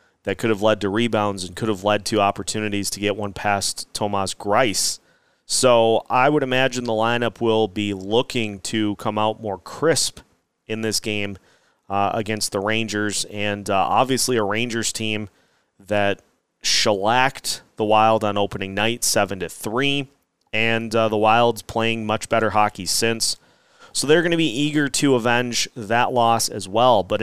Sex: male